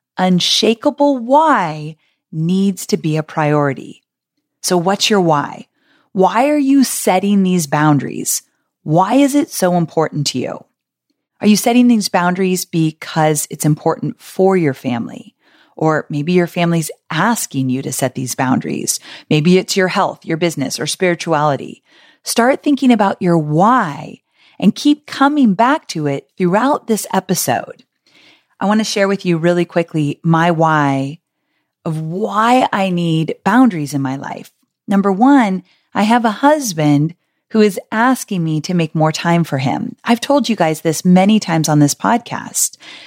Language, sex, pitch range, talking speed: English, female, 160-230 Hz, 155 wpm